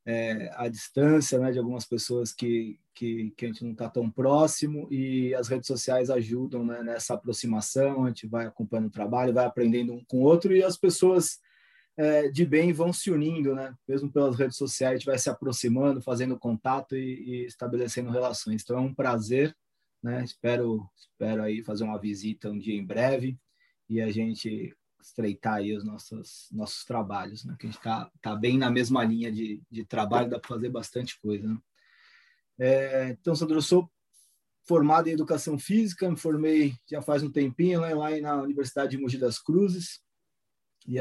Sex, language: male, Portuguese